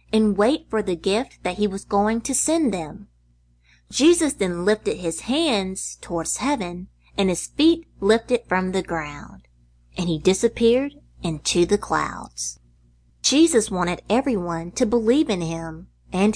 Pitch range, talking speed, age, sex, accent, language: 150-235 Hz, 145 wpm, 30-49, female, American, English